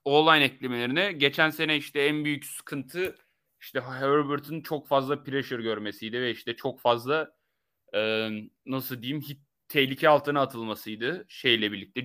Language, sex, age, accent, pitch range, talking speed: Turkish, male, 30-49, native, 130-170 Hz, 135 wpm